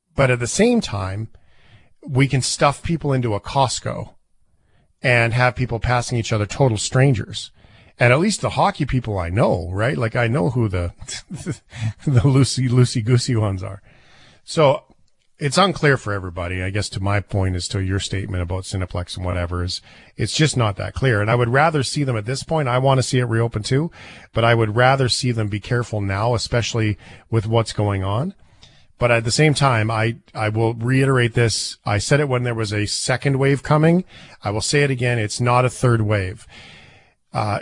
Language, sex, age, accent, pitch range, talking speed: English, male, 40-59, American, 105-135 Hz, 200 wpm